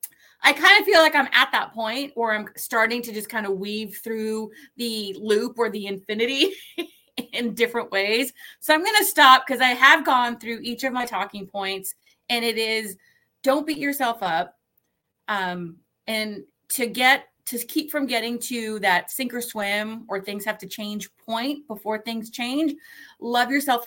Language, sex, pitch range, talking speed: English, female, 200-270 Hz, 180 wpm